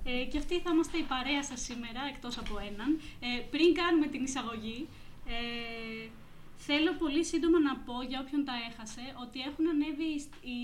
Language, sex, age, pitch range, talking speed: Greek, female, 20-39, 240-295 Hz, 165 wpm